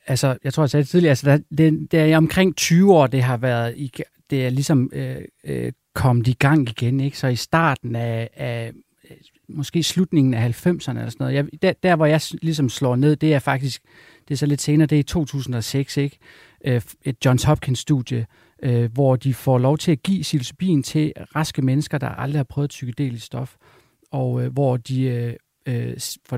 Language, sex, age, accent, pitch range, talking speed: Danish, male, 40-59, native, 125-155 Hz, 200 wpm